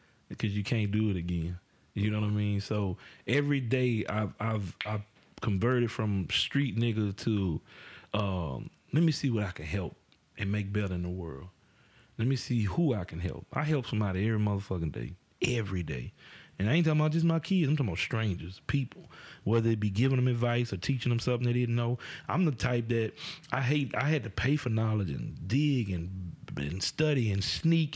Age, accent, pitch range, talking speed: 30-49, American, 100-130 Hz, 205 wpm